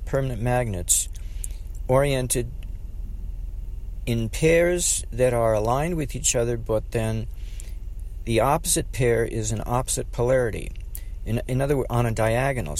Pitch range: 85-120 Hz